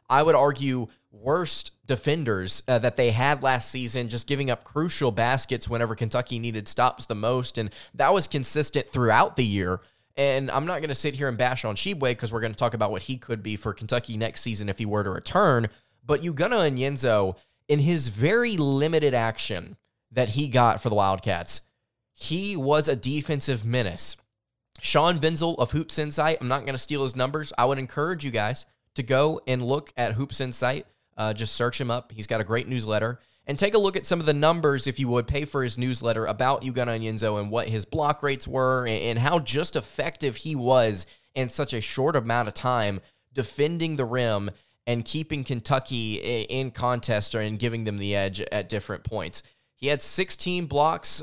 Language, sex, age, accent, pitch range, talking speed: English, male, 20-39, American, 115-145 Hz, 200 wpm